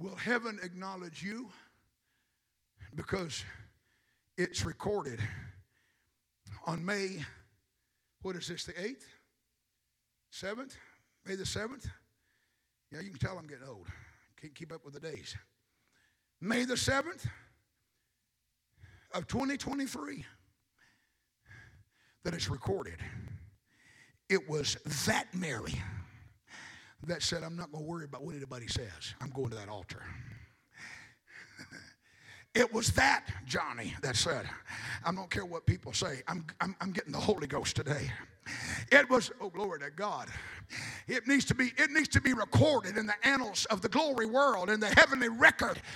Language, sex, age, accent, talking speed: English, male, 60-79, American, 135 wpm